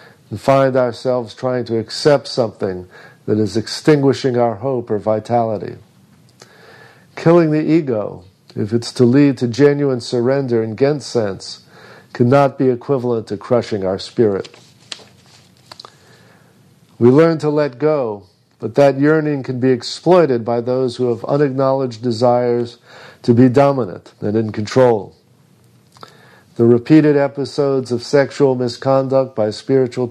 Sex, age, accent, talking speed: male, 50-69, American, 130 wpm